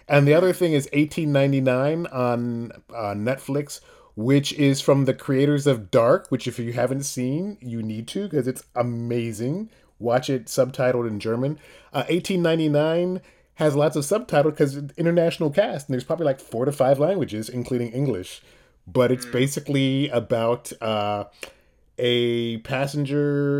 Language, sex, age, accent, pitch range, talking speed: English, male, 30-49, American, 115-145 Hz, 150 wpm